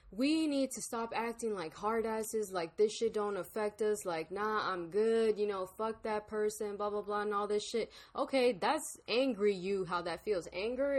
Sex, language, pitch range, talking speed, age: female, English, 190-235 Hz, 210 wpm, 10-29